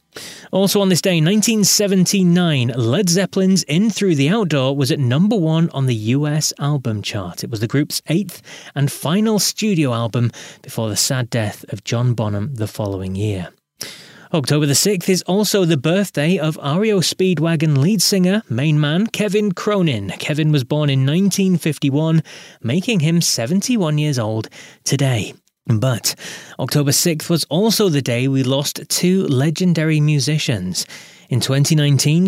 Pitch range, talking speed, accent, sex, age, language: 125-180 Hz, 145 wpm, British, male, 20-39, English